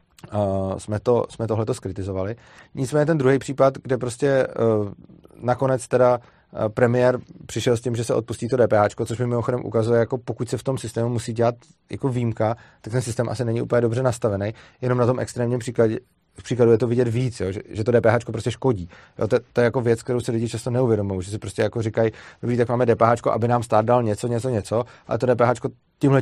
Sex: male